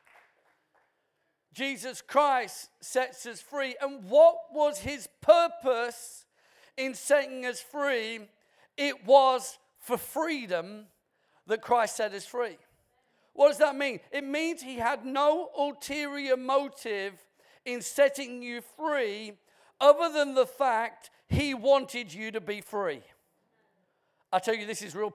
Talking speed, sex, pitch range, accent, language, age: 130 wpm, male, 220-275 Hz, British, English, 50-69